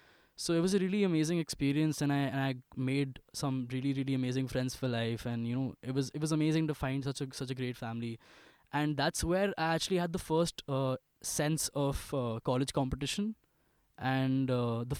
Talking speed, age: 210 wpm, 10-29